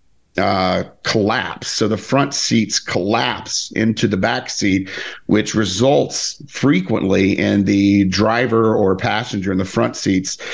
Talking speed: 130 wpm